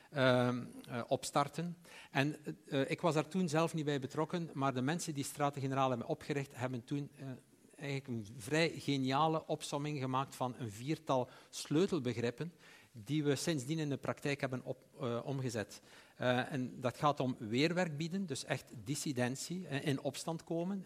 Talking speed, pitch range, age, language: 165 wpm, 125-155 Hz, 60-79, Dutch